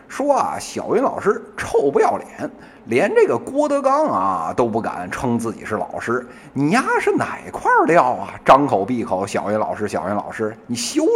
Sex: male